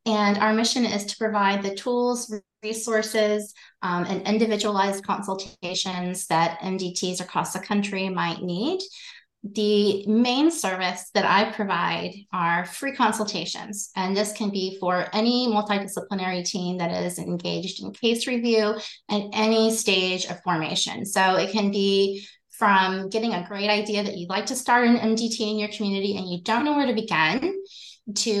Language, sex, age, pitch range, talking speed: English, female, 20-39, 185-220 Hz, 160 wpm